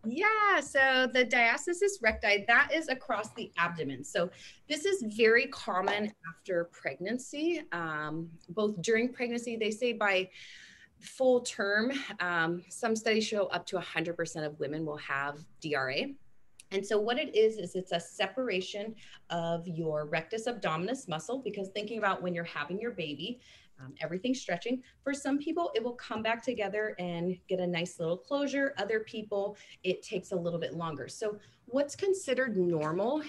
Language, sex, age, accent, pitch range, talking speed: English, female, 30-49, American, 170-245 Hz, 160 wpm